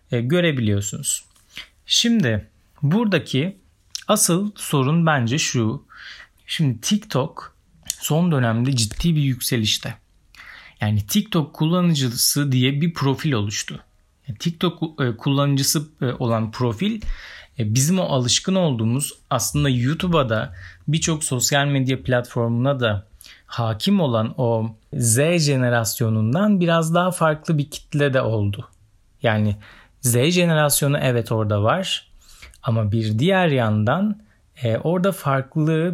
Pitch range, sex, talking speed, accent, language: 115-160 Hz, male, 105 wpm, native, Turkish